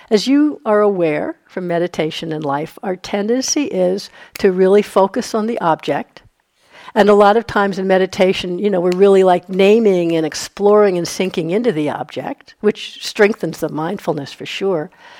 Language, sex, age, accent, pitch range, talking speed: English, female, 60-79, American, 180-225 Hz, 170 wpm